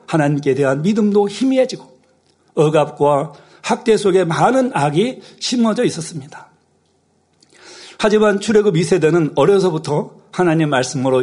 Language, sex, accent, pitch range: Korean, male, native, 155-220 Hz